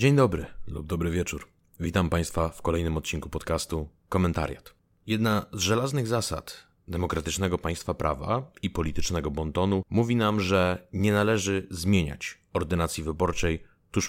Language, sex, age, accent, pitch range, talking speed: Polish, male, 30-49, native, 85-110 Hz, 130 wpm